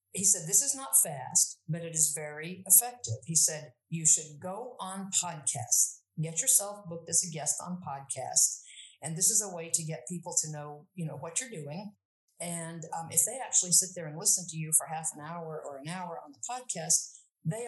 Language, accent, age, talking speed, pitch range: English, American, 50-69, 215 wpm, 155-195 Hz